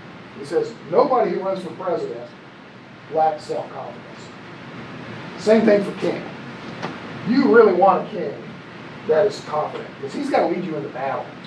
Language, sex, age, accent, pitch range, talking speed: English, male, 40-59, American, 170-220 Hz, 155 wpm